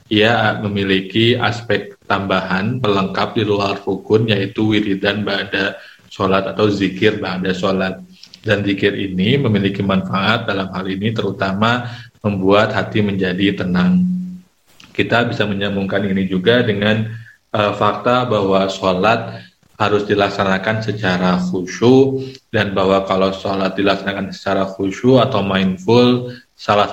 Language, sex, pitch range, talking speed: Indonesian, male, 95-110 Hz, 120 wpm